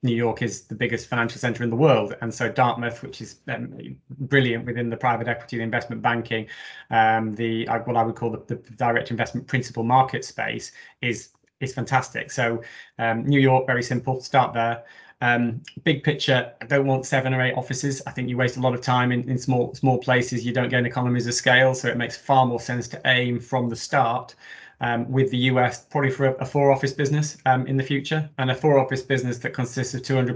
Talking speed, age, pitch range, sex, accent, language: 220 wpm, 20-39, 120-130 Hz, male, British, English